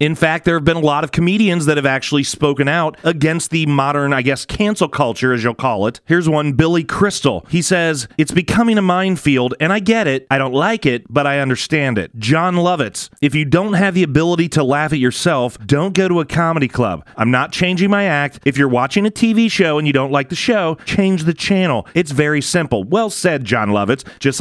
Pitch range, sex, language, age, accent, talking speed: 135-175 Hz, male, English, 30-49, American, 230 wpm